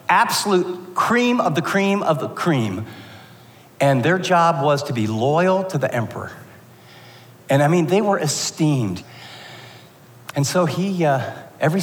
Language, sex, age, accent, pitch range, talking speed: English, male, 50-69, American, 120-155 Hz, 145 wpm